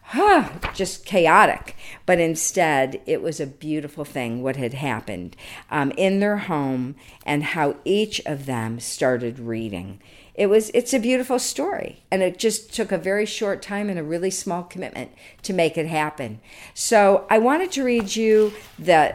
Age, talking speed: 50-69, 170 wpm